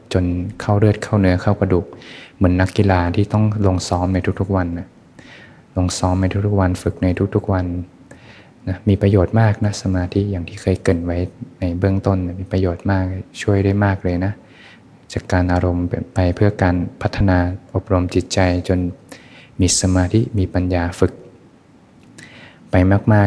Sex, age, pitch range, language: male, 20-39, 90-100 Hz, Thai